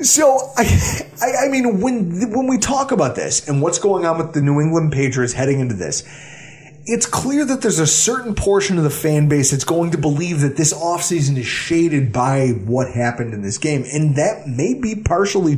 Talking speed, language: 205 wpm, English